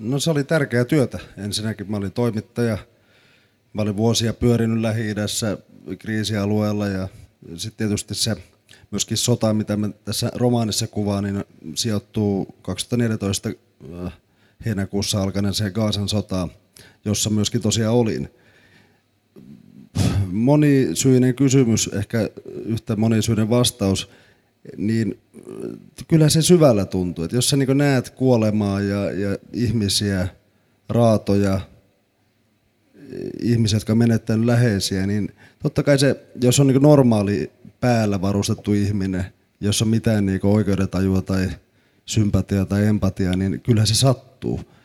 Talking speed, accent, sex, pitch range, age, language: 115 wpm, native, male, 100-120 Hz, 30-49, Finnish